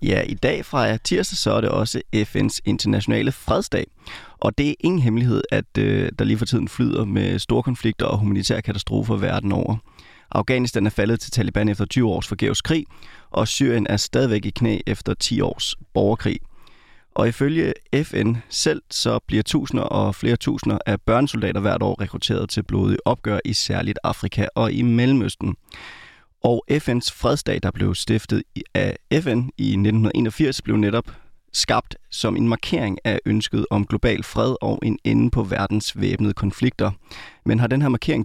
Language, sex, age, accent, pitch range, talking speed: Danish, male, 30-49, native, 105-125 Hz, 170 wpm